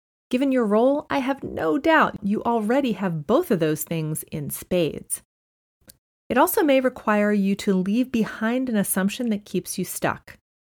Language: English